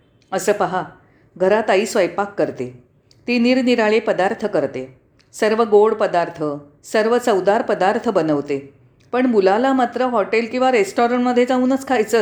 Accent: native